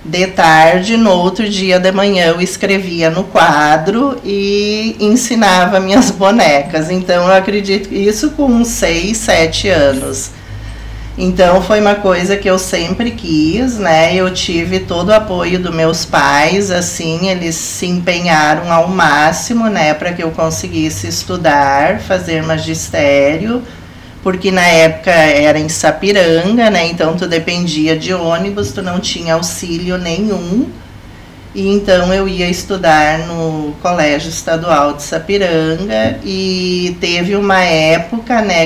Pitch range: 160-190 Hz